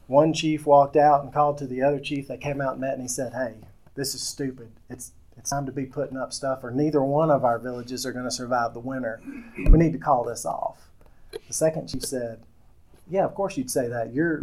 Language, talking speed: English, 255 wpm